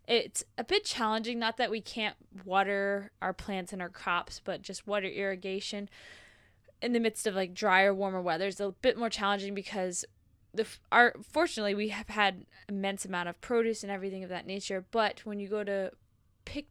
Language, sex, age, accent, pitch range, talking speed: English, female, 10-29, American, 190-225 Hz, 195 wpm